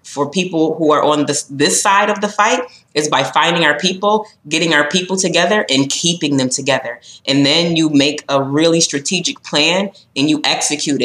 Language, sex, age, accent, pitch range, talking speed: English, female, 20-39, American, 145-170 Hz, 190 wpm